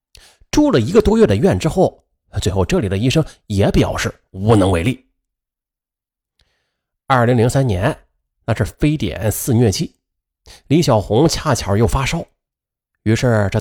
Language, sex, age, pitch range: Chinese, male, 30-49, 100-150 Hz